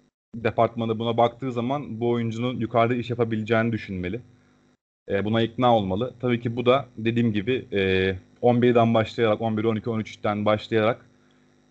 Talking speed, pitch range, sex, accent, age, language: 140 wpm, 105-120 Hz, male, native, 30-49, Turkish